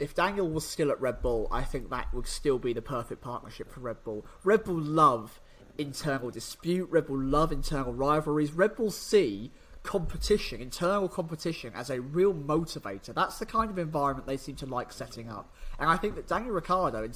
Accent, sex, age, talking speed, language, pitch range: British, male, 30-49, 200 wpm, English, 135-175 Hz